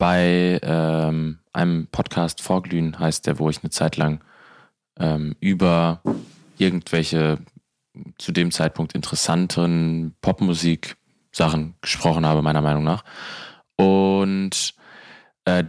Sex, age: male, 20-39